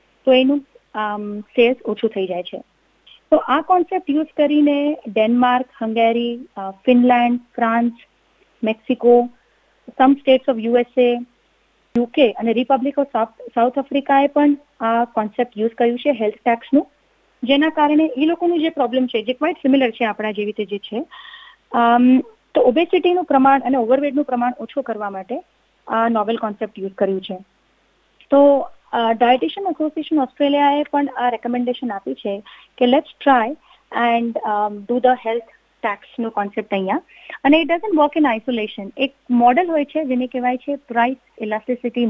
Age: 30-49